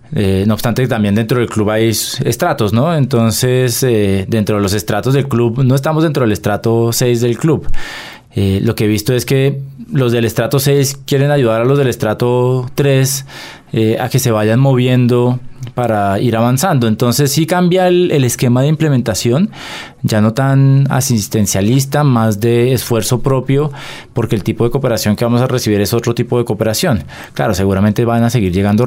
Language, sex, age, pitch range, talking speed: Spanish, male, 20-39, 105-130 Hz, 185 wpm